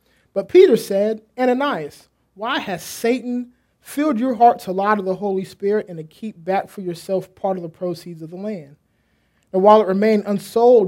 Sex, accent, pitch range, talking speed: male, American, 180-215 Hz, 190 wpm